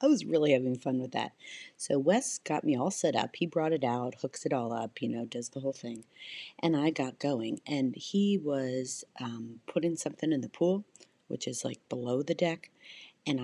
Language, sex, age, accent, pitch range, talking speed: English, female, 40-59, American, 130-170 Hz, 215 wpm